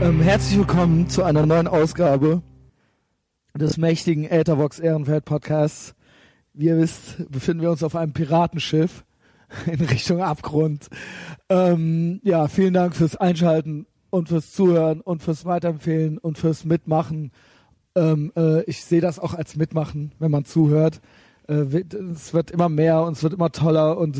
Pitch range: 150-170 Hz